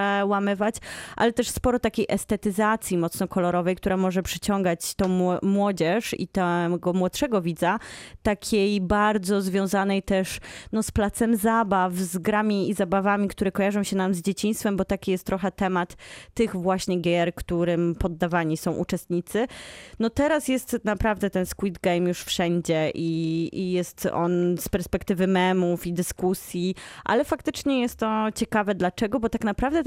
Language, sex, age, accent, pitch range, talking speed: Polish, female, 20-39, native, 180-220 Hz, 145 wpm